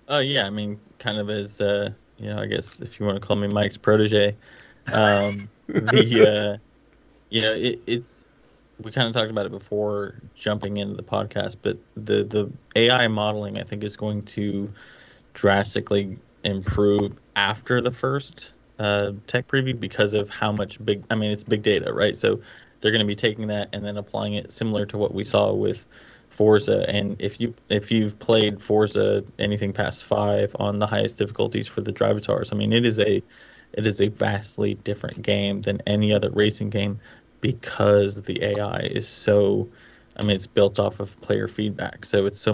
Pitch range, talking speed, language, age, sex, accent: 100-110 Hz, 190 wpm, English, 20-39, male, American